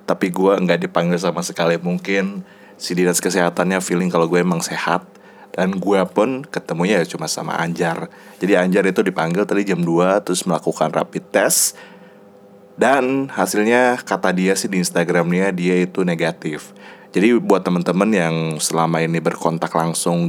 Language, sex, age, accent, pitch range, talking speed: Indonesian, male, 20-39, native, 85-100 Hz, 155 wpm